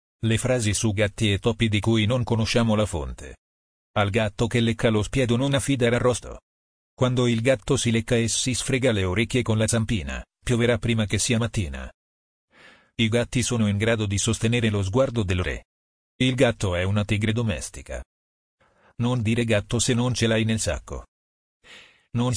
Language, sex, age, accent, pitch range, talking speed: Italian, male, 40-59, native, 85-120 Hz, 175 wpm